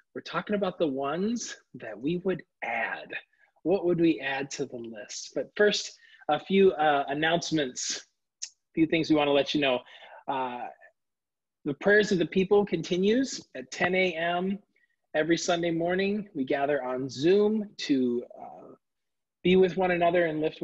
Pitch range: 140-190 Hz